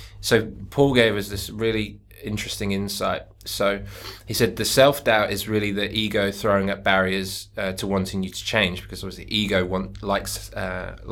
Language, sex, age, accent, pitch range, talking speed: English, male, 20-39, British, 95-105 Hz, 180 wpm